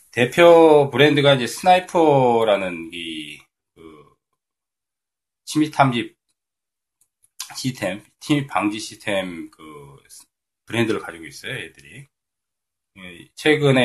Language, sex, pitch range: Korean, male, 95-135 Hz